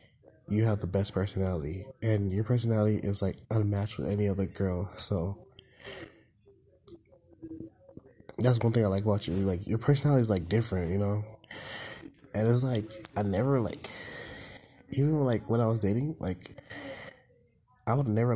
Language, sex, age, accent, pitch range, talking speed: English, male, 20-39, American, 100-120 Hz, 155 wpm